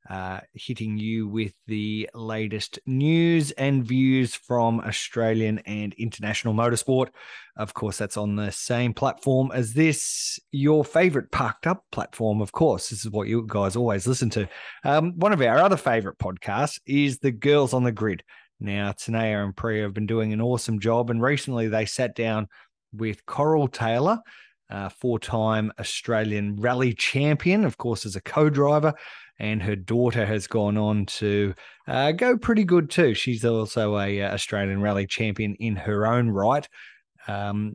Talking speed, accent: 160 wpm, Australian